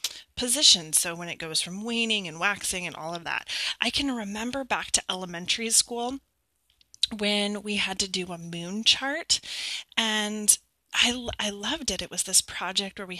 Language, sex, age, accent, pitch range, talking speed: English, female, 30-49, American, 175-225 Hz, 175 wpm